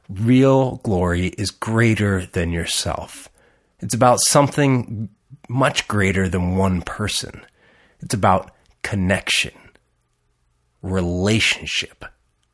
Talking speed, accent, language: 85 wpm, American, English